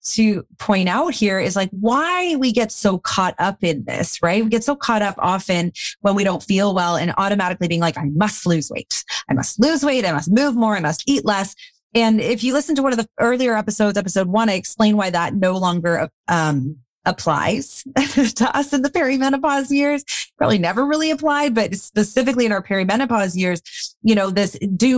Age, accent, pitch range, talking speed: 30-49, American, 175-235 Hz, 205 wpm